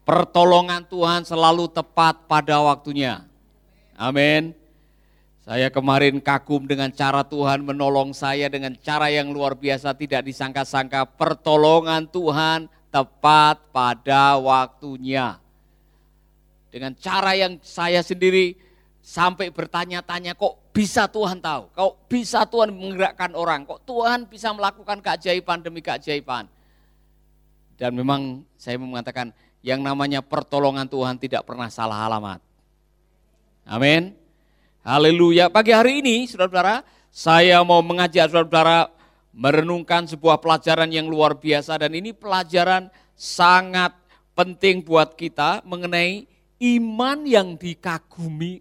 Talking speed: 110 wpm